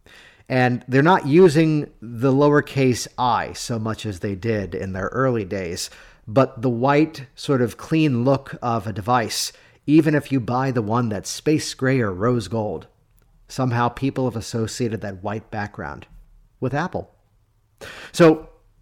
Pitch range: 110-150 Hz